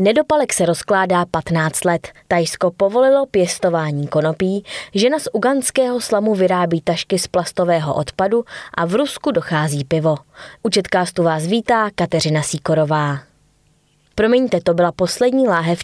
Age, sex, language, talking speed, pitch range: 20-39, female, Czech, 125 wpm, 170-210 Hz